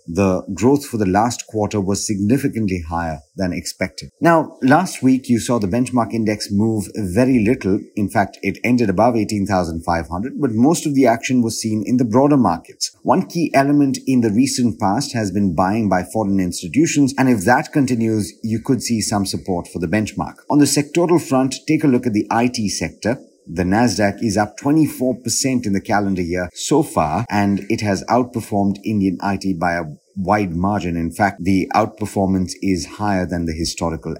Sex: male